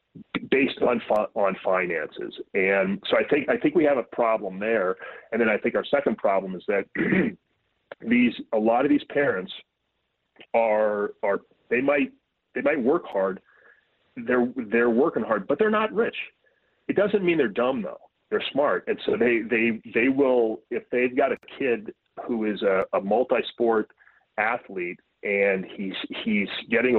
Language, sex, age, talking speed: English, male, 30-49, 170 wpm